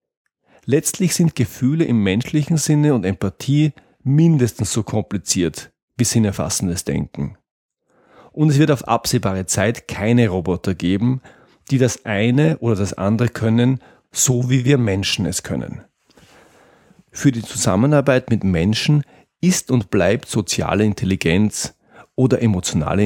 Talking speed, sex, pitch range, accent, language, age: 125 wpm, male, 100-135 Hz, German, German, 40-59